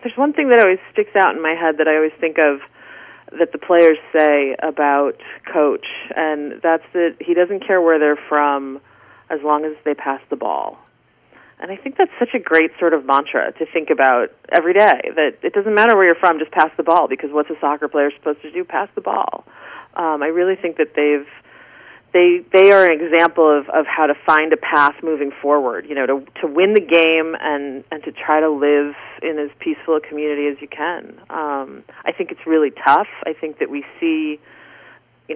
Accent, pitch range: American, 150-175 Hz